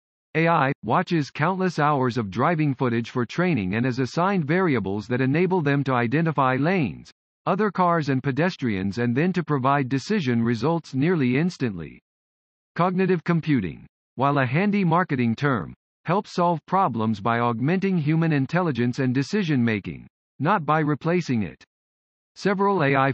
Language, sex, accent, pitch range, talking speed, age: English, male, American, 120-175 Hz, 135 wpm, 50-69